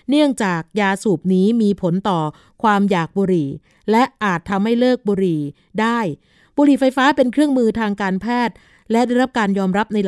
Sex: female